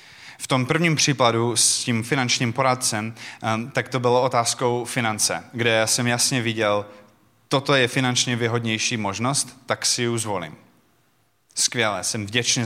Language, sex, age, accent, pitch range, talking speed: Czech, male, 20-39, native, 110-130 Hz, 140 wpm